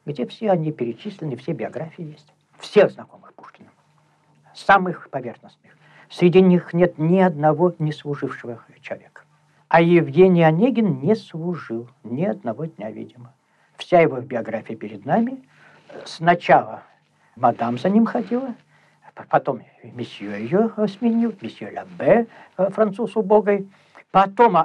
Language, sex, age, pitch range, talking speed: Russian, male, 60-79, 135-195 Hz, 115 wpm